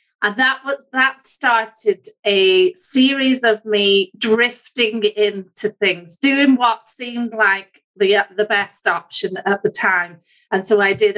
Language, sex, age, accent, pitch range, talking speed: English, female, 30-49, British, 195-235 Hz, 145 wpm